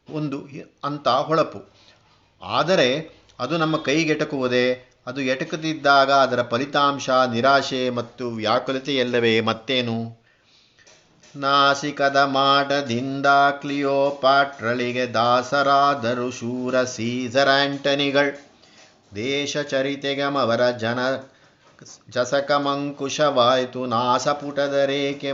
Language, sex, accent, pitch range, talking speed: Kannada, male, native, 125-145 Hz, 70 wpm